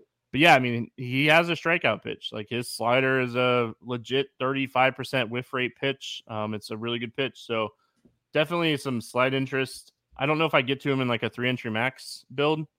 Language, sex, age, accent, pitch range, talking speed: English, male, 20-39, American, 120-150 Hz, 210 wpm